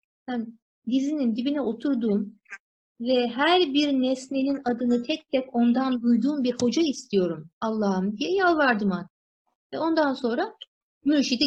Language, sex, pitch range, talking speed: Turkish, female, 205-290 Hz, 125 wpm